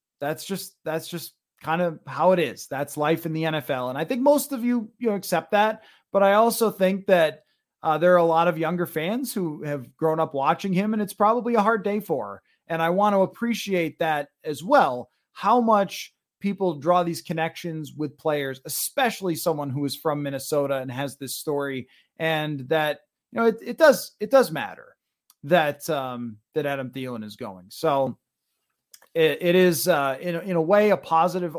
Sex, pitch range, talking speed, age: male, 145-185 Hz, 195 wpm, 30-49